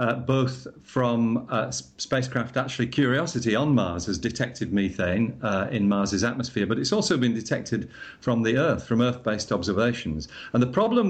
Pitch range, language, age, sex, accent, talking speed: 115-140 Hz, English, 50-69, male, British, 160 wpm